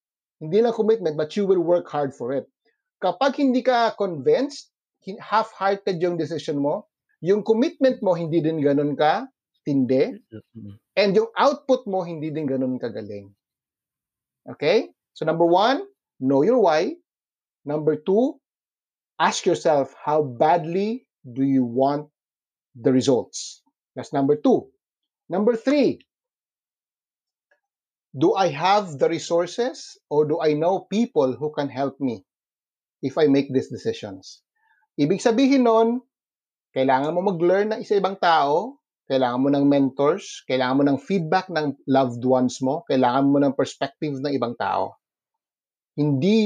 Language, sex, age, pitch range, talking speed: Filipino, male, 30-49, 140-215 Hz, 135 wpm